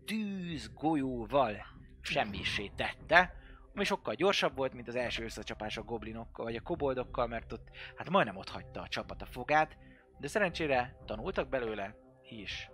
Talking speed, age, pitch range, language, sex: 145 wpm, 30-49, 105-160 Hz, Hungarian, male